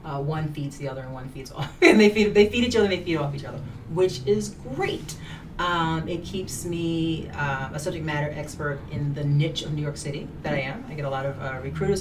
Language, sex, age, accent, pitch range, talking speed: English, female, 30-49, American, 135-155 Hz, 255 wpm